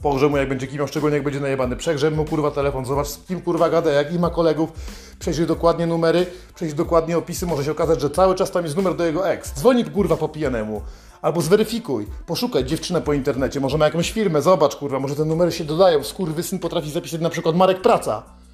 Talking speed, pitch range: 225 wpm, 155-195 Hz